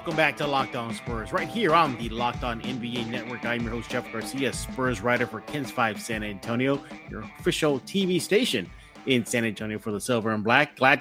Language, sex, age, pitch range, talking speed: English, male, 30-49, 120-150 Hz, 200 wpm